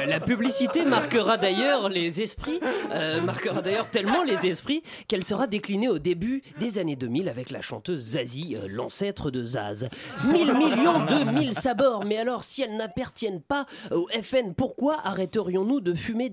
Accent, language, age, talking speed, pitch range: French, French, 30-49, 165 wpm, 155-235 Hz